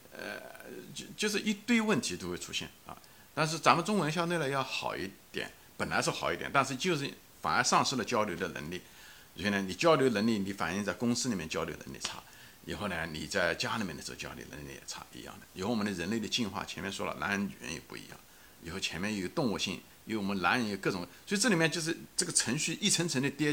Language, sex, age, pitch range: Chinese, male, 60-79, 110-170 Hz